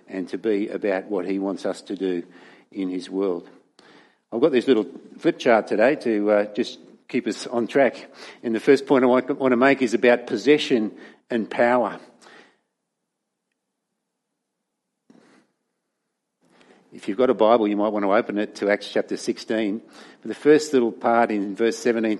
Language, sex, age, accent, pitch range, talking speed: English, male, 50-69, Australian, 105-130 Hz, 170 wpm